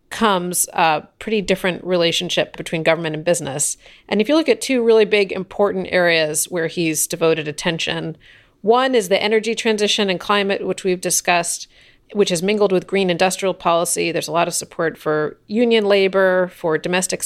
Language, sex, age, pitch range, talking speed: English, female, 40-59, 170-205 Hz, 175 wpm